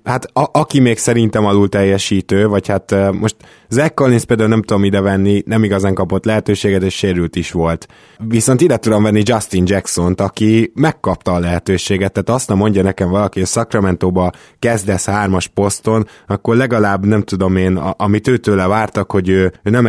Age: 20-39